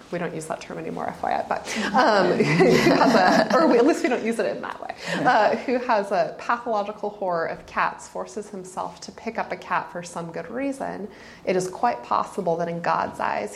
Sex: female